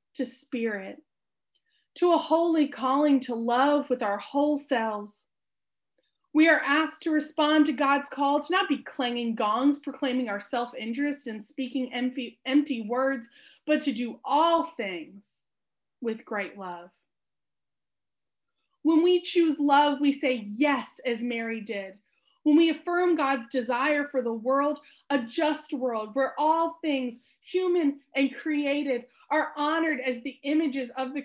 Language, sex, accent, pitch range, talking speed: English, female, American, 245-305 Hz, 145 wpm